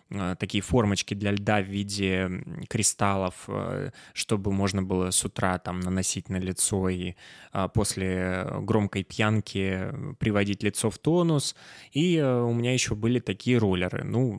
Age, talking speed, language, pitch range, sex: 20-39, 135 wpm, Russian, 100-130 Hz, male